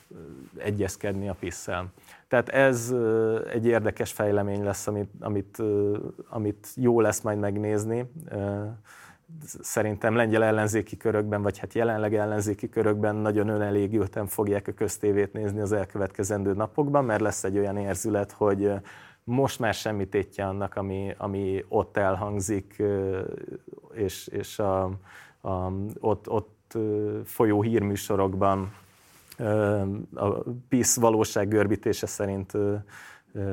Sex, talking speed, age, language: male, 105 wpm, 30-49, Hungarian